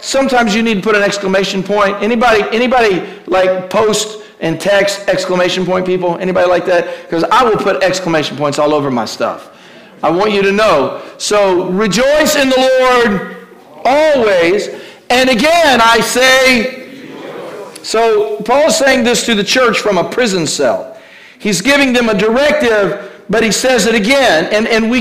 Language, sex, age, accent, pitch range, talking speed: English, male, 50-69, American, 210-285 Hz, 170 wpm